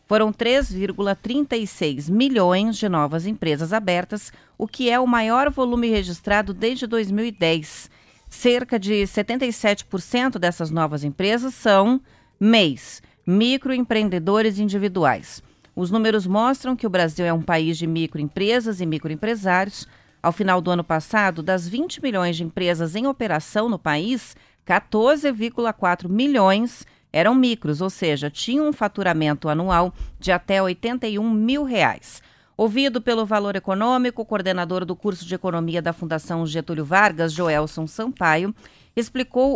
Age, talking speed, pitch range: 40-59, 130 wpm, 170-230 Hz